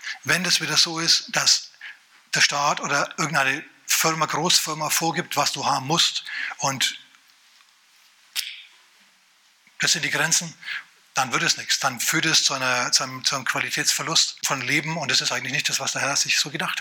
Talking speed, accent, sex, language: 170 wpm, German, male, German